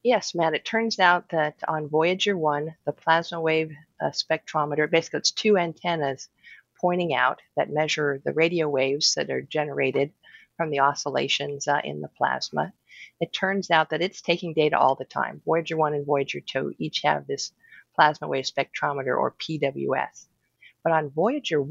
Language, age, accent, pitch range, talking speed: English, 50-69, American, 145-175 Hz, 170 wpm